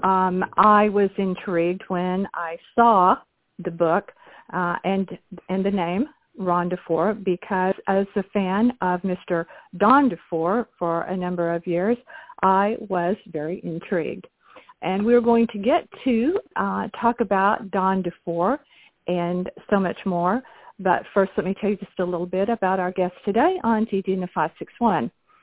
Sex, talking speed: female, 150 wpm